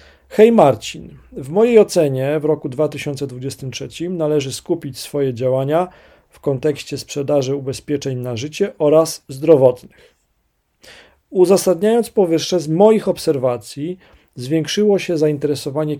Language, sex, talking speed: Polish, male, 105 wpm